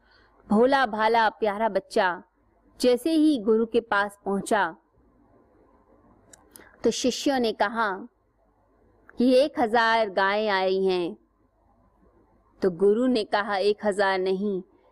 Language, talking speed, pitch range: Hindi, 110 wpm, 195-245 Hz